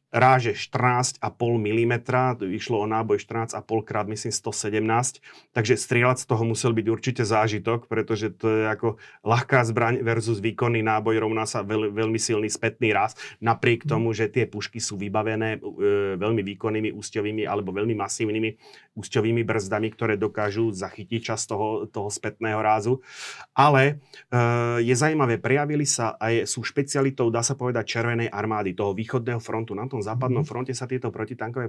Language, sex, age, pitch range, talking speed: Slovak, male, 30-49, 110-125 Hz, 155 wpm